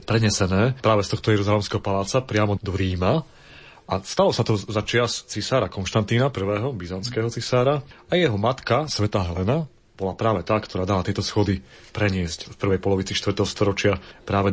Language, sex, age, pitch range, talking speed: Slovak, male, 30-49, 105-120 Hz, 155 wpm